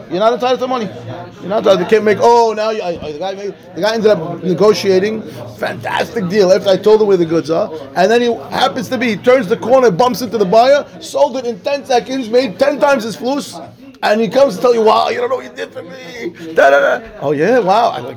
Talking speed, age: 255 wpm, 30-49